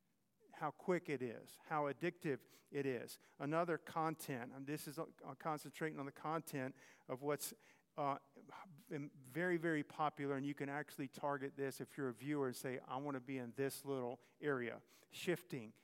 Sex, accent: male, American